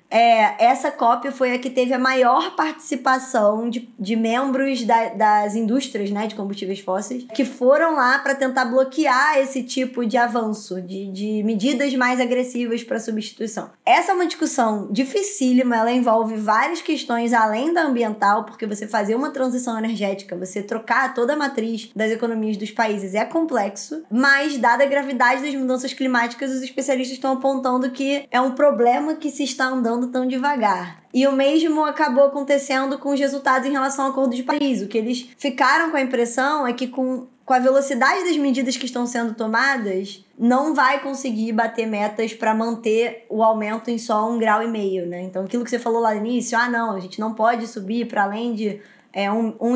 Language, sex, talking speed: Portuguese, male, 185 wpm